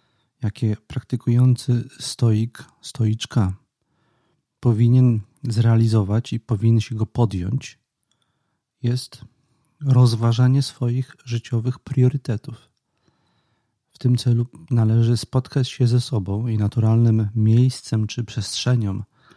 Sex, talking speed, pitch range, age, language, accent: male, 90 wpm, 115-130 Hz, 40-59, Polish, native